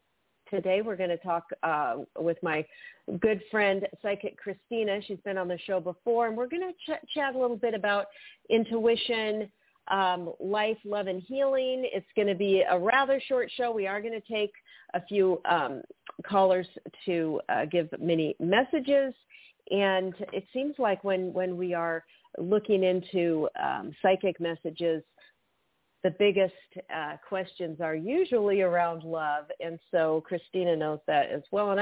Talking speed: 160 wpm